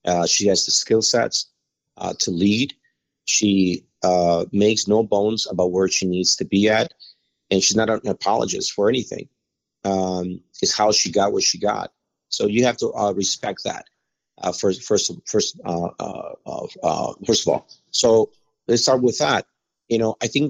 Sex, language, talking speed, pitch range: male, English, 180 wpm, 95-120 Hz